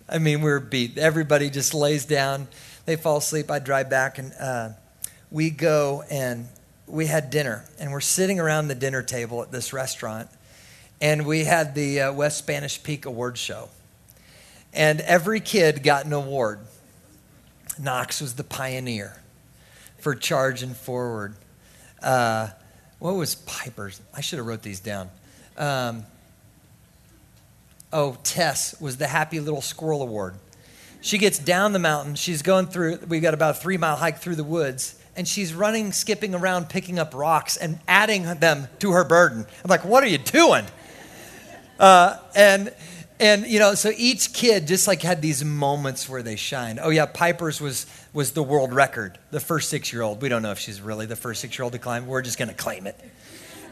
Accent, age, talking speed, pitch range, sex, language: American, 40-59, 175 wpm, 130-170 Hz, male, English